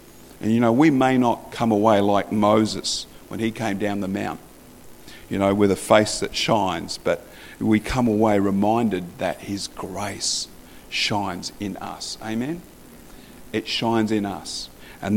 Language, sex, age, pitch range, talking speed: English, male, 50-69, 100-120 Hz, 160 wpm